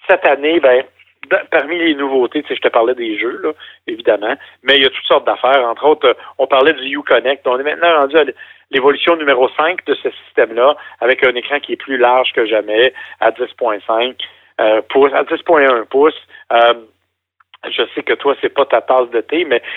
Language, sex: French, male